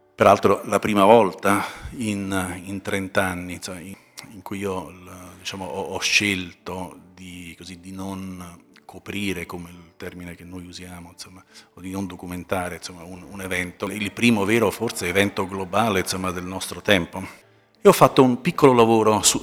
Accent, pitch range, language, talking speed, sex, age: native, 90-100 Hz, Italian, 165 wpm, male, 40-59